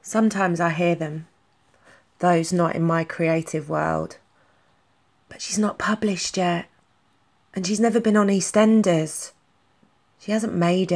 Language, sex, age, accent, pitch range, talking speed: English, female, 20-39, British, 160-180 Hz, 130 wpm